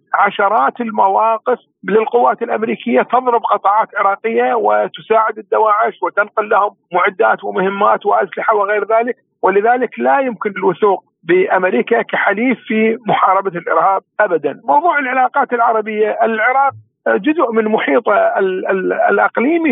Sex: male